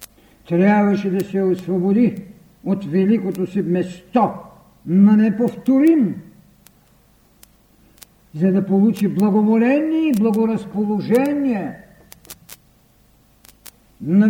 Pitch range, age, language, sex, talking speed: 180-220 Hz, 60-79, Bulgarian, male, 70 wpm